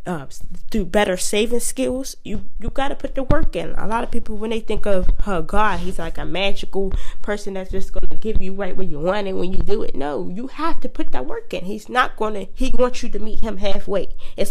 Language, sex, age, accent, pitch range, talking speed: English, female, 20-39, American, 185-235 Hz, 260 wpm